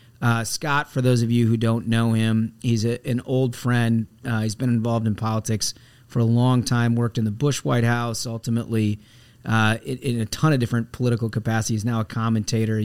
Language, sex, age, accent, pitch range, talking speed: English, male, 30-49, American, 110-125 Hz, 200 wpm